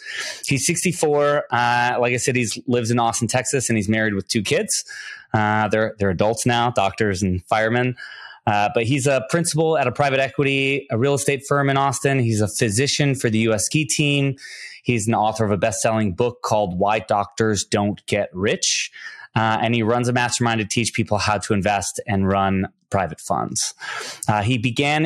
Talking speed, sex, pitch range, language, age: 190 wpm, male, 105-135 Hz, English, 20-39